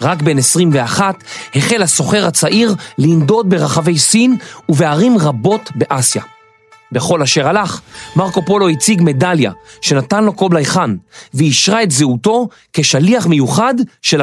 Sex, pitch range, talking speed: male, 130-200 Hz, 120 wpm